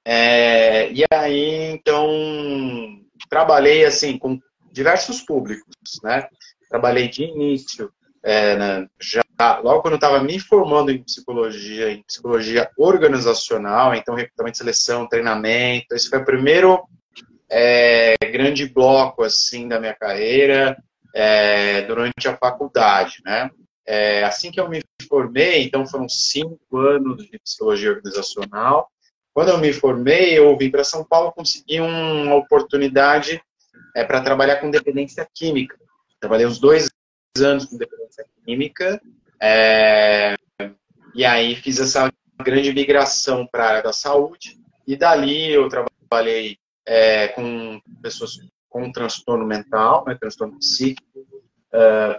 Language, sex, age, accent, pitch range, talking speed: Portuguese, male, 30-49, Brazilian, 115-150 Hz, 125 wpm